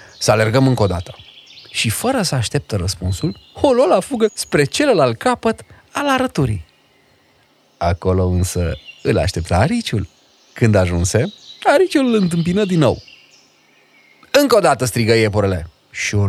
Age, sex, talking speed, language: 30-49, male, 135 wpm, Romanian